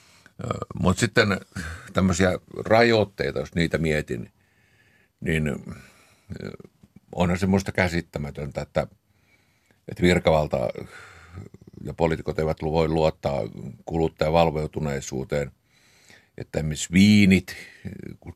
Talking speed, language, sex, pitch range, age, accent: 80 wpm, Finnish, male, 75-90 Hz, 50-69, native